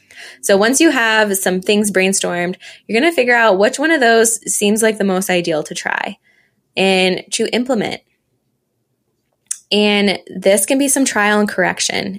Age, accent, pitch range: 20-39, American, 170-205 Hz